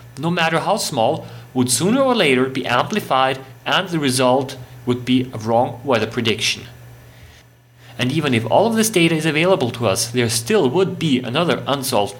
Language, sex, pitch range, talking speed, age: English, male, 120-155 Hz, 175 wpm, 40-59